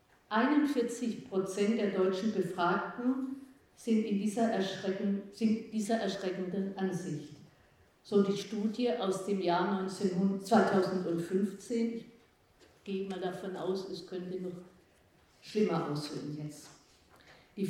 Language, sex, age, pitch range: German, female, 50-69, 180-210 Hz